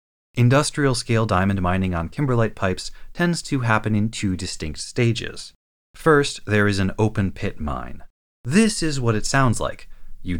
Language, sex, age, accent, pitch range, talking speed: English, male, 30-49, American, 90-125 Hz, 155 wpm